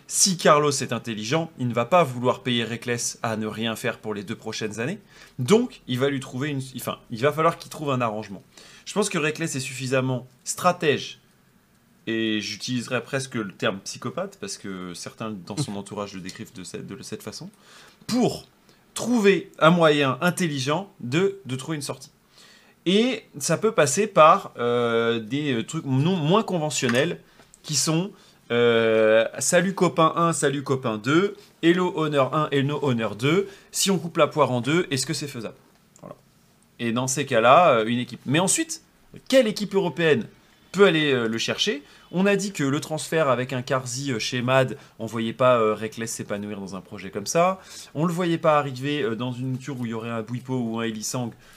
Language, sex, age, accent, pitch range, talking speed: French, male, 30-49, French, 115-165 Hz, 195 wpm